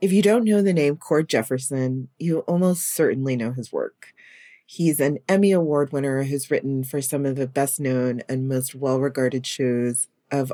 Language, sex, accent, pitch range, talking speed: English, female, American, 130-165 Hz, 175 wpm